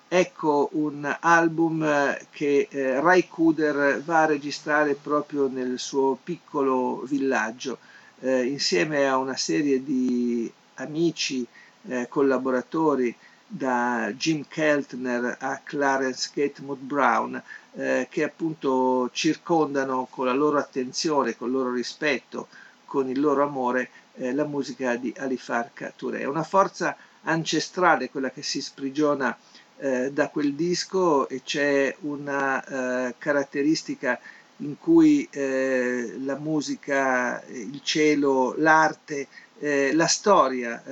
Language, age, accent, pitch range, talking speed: Italian, 50-69, native, 130-150 Hz, 115 wpm